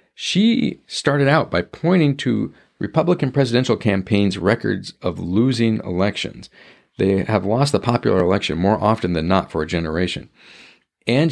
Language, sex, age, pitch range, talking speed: English, male, 50-69, 95-140 Hz, 145 wpm